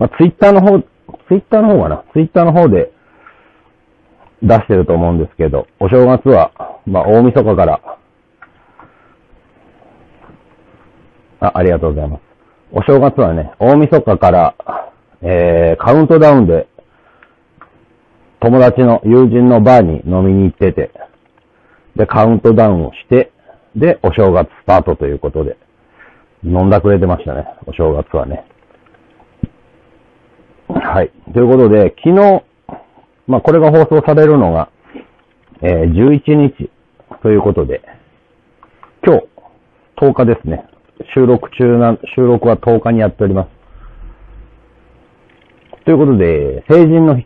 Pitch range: 90-140 Hz